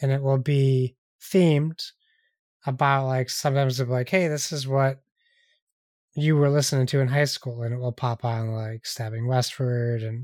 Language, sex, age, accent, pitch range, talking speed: English, male, 20-39, American, 130-150 Hz, 180 wpm